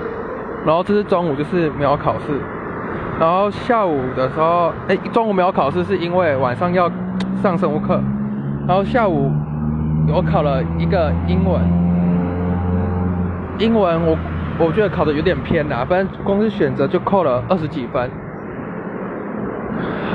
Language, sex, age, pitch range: Chinese, male, 20-39, 130-185 Hz